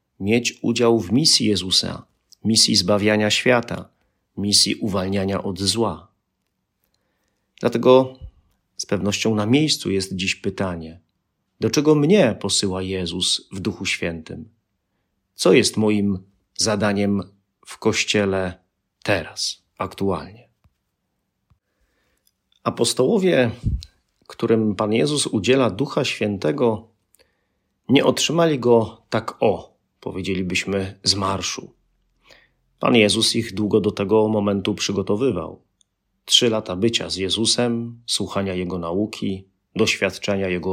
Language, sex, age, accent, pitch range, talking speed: Polish, male, 40-59, native, 95-115 Hz, 100 wpm